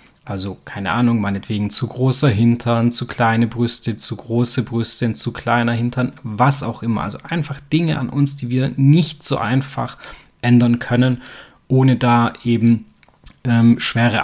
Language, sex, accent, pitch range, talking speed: German, male, German, 115-140 Hz, 150 wpm